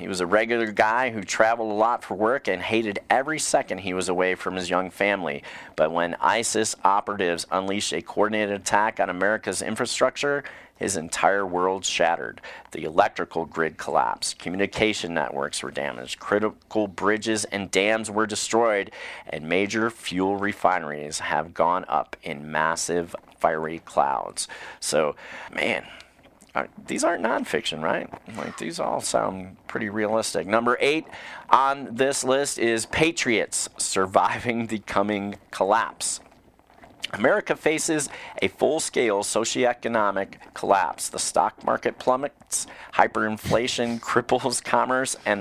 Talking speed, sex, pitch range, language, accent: 130 wpm, male, 95-115 Hz, English, American